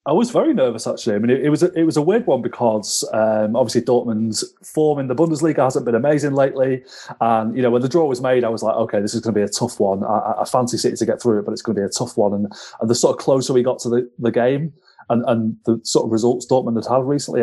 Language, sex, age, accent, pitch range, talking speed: English, male, 30-49, British, 115-135 Hz, 285 wpm